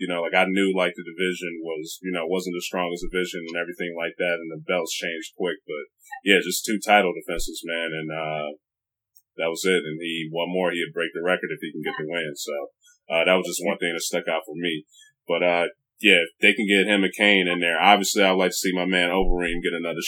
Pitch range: 85-105 Hz